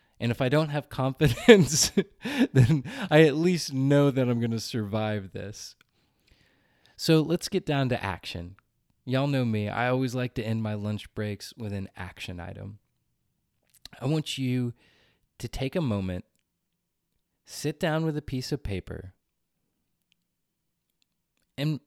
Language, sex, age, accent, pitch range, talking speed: English, male, 20-39, American, 100-140 Hz, 145 wpm